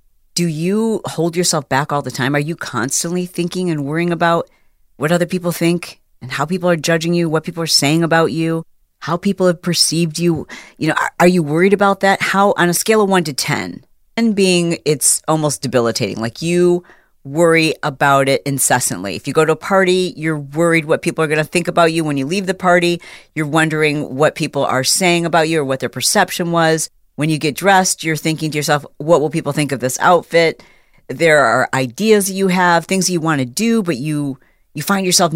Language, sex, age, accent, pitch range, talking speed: English, female, 40-59, American, 145-175 Hz, 220 wpm